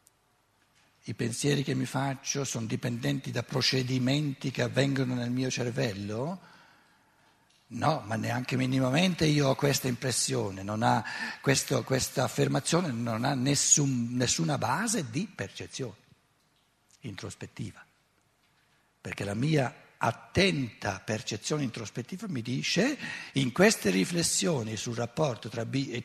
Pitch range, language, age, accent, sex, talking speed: 110-145 Hz, Italian, 60-79, native, male, 110 wpm